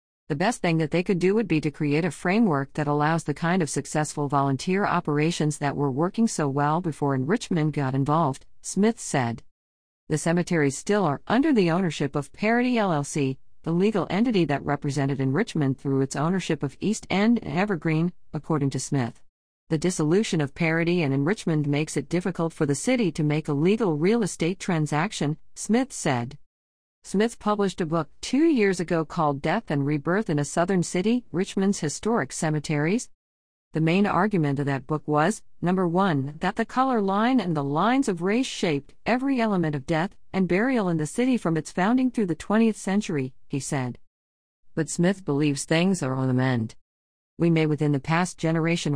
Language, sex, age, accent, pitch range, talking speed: English, female, 50-69, American, 145-190 Hz, 185 wpm